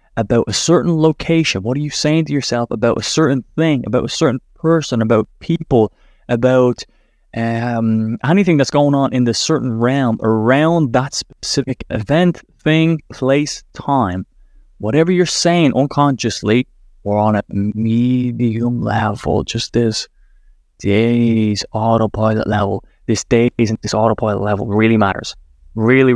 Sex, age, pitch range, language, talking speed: male, 20-39, 105-145 Hz, English, 135 wpm